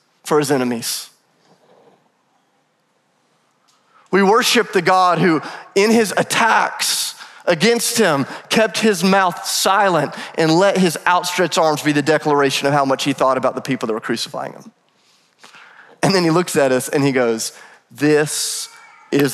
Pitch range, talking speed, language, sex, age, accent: 140-170 Hz, 150 wpm, English, male, 30-49, American